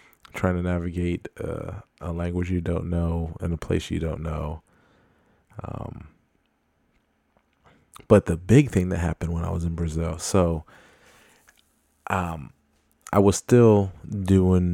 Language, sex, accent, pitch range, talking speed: English, male, American, 85-95 Hz, 135 wpm